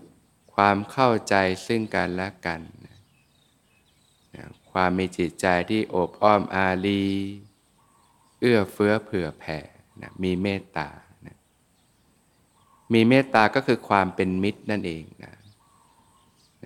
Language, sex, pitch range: Thai, male, 90-110 Hz